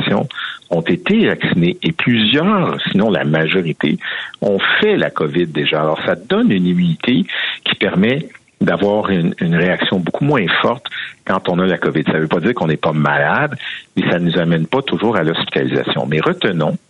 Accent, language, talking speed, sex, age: French, French, 185 wpm, male, 60-79